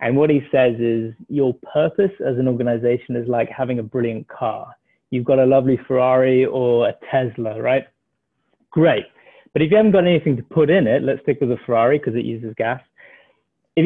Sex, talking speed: male, 200 wpm